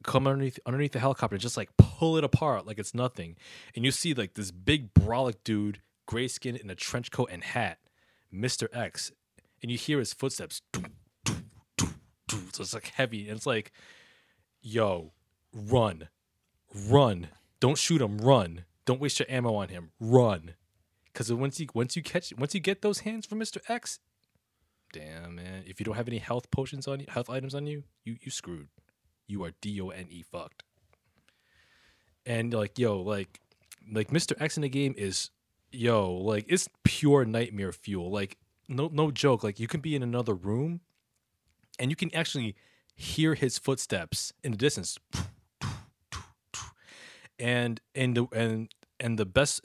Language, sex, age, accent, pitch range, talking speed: English, male, 20-39, American, 100-135 Hz, 170 wpm